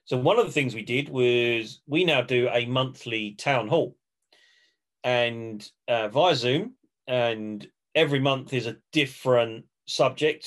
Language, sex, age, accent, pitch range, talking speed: English, male, 40-59, British, 115-145 Hz, 150 wpm